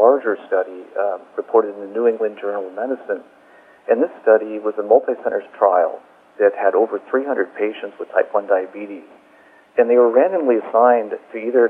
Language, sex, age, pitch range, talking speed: English, male, 40-59, 105-170 Hz, 175 wpm